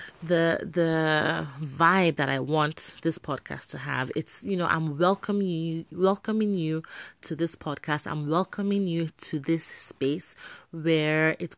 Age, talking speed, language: 30-49, 150 wpm, English